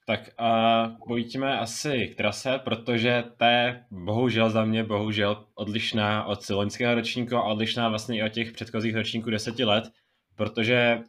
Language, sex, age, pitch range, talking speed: Czech, male, 20-39, 110-120 Hz, 150 wpm